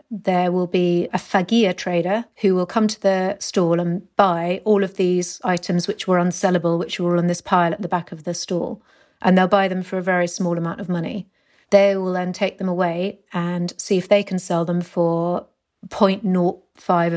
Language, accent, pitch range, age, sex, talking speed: English, British, 180-205 Hz, 40-59, female, 205 wpm